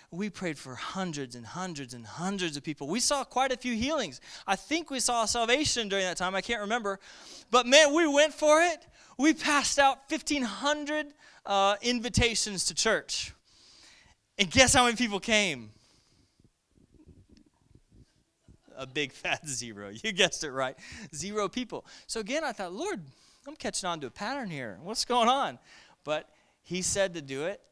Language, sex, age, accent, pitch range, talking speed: English, male, 20-39, American, 135-210 Hz, 165 wpm